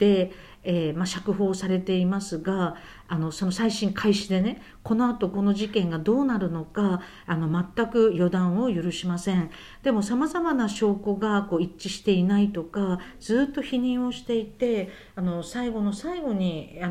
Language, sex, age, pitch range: Japanese, female, 50-69, 180-230 Hz